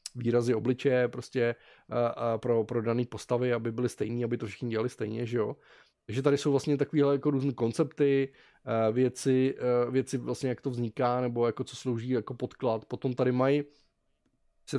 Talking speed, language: 180 wpm, Czech